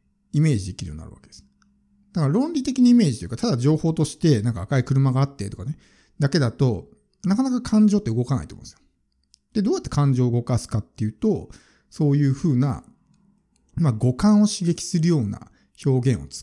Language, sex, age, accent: Japanese, male, 50-69, native